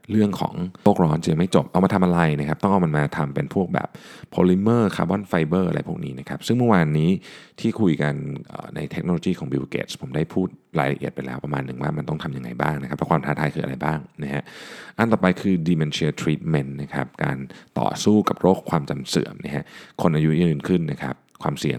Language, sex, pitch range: Thai, male, 75-90 Hz